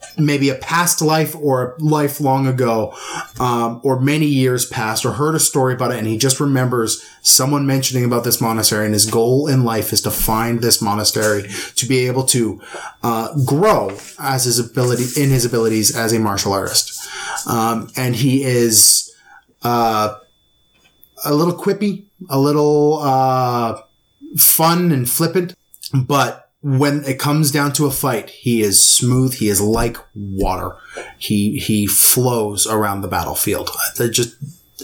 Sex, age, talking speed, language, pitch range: male, 30-49, 155 wpm, English, 115-145 Hz